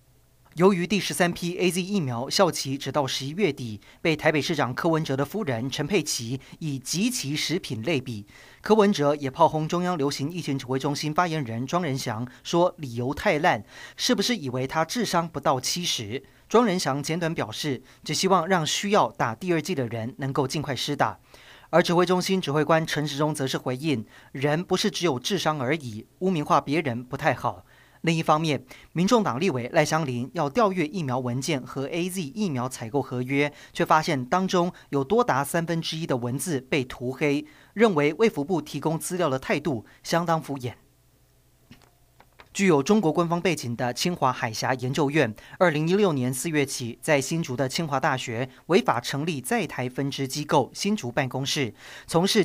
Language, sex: Chinese, male